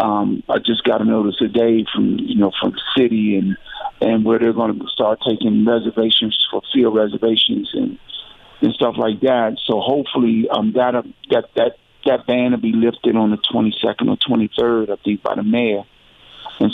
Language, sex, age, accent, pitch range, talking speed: English, male, 50-69, American, 110-125 Hz, 195 wpm